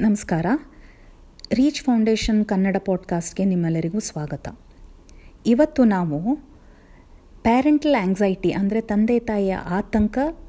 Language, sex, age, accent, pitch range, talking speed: Telugu, female, 30-49, native, 180-235 Hz, 85 wpm